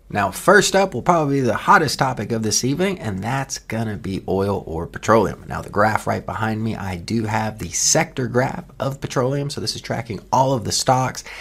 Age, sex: 30-49, male